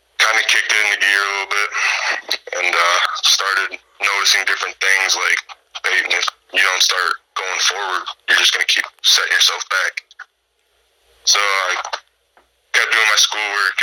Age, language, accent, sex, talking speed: 20-39, English, American, male, 155 wpm